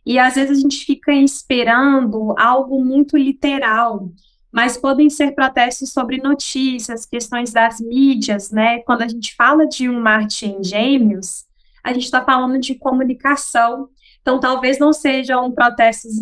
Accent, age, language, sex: Brazilian, 20-39, Portuguese, female